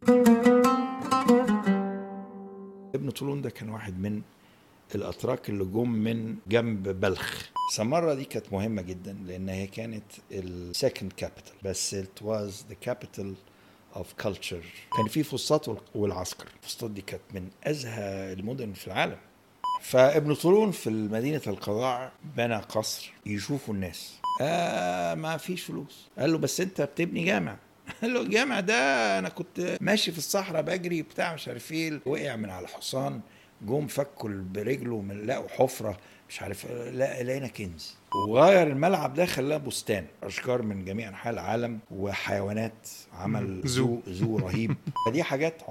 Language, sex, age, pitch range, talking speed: Arabic, male, 60-79, 100-155 Hz, 135 wpm